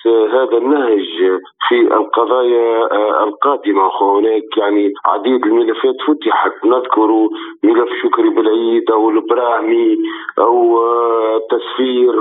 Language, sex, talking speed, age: Arabic, male, 90 wpm, 40-59